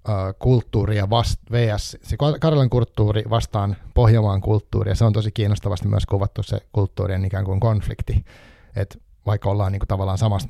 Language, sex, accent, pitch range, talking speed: Finnish, male, native, 100-115 Hz, 130 wpm